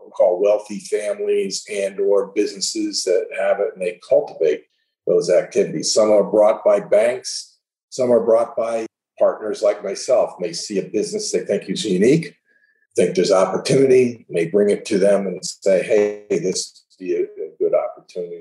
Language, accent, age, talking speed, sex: English, American, 50-69, 165 wpm, male